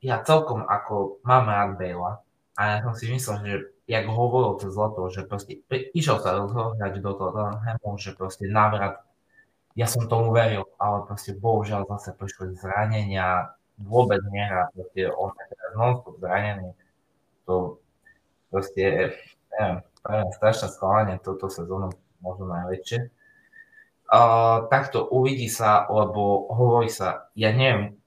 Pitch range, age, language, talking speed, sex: 95-110 Hz, 20-39, Slovak, 130 wpm, male